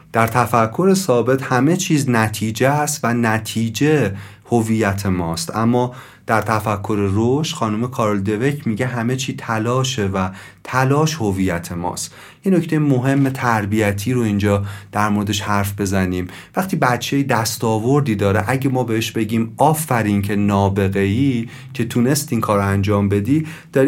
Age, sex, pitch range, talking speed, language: 30-49, male, 105-140 Hz, 135 wpm, Persian